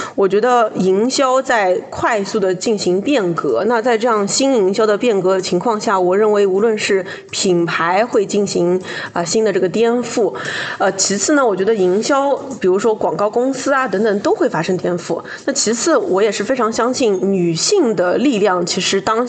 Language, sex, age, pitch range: Chinese, female, 20-39, 185-235 Hz